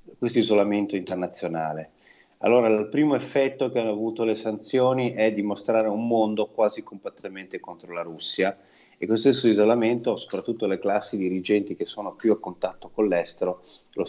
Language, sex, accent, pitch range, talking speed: Italian, male, native, 95-120 Hz, 160 wpm